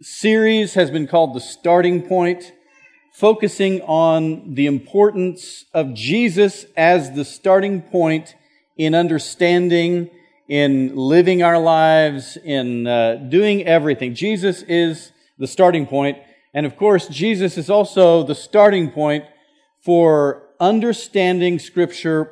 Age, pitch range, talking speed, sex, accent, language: 40-59, 145-190 Hz, 120 wpm, male, American, English